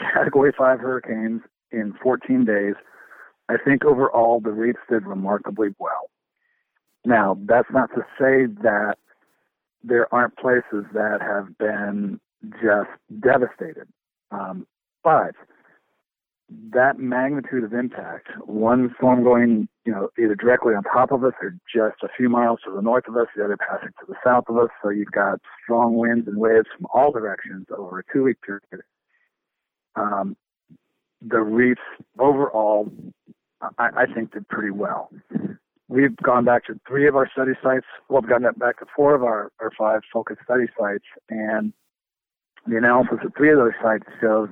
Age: 50-69